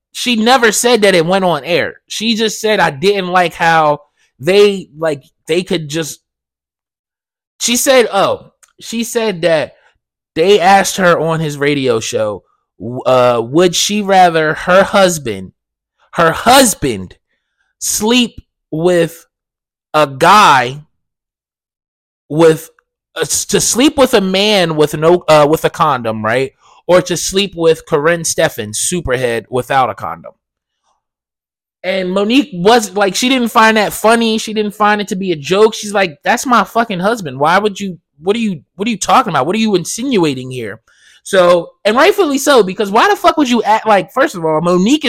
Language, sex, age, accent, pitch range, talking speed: English, male, 20-39, American, 160-230 Hz, 165 wpm